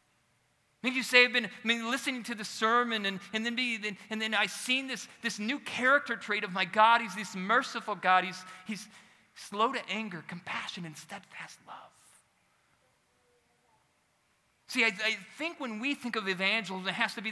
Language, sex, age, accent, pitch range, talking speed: English, male, 40-59, American, 185-235 Hz, 180 wpm